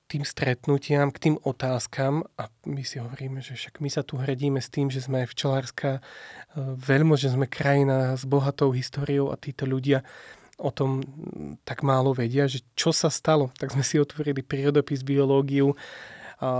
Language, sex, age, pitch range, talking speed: Slovak, male, 30-49, 130-140 Hz, 170 wpm